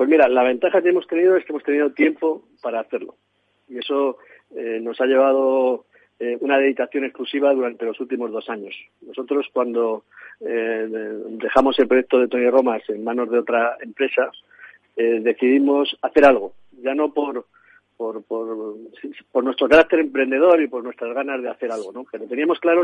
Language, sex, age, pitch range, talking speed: Spanish, male, 50-69, 120-150 Hz, 180 wpm